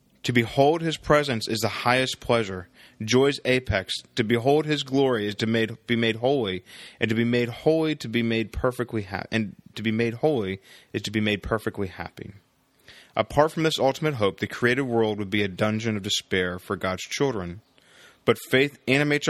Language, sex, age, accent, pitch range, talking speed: English, male, 20-39, American, 105-125 Hz, 185 wpm